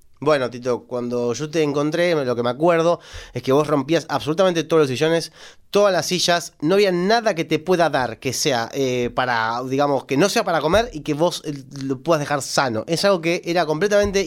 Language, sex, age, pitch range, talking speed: Spanish, male, 30-49, 125-190 Hz, 210 wpm